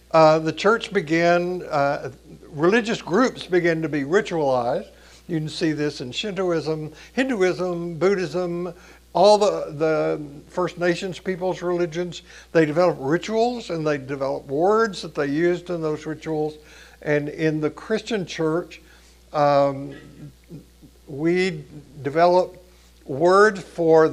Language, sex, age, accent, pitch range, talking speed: English, male, 60-79, American, 145-180 Hz, 120 wpm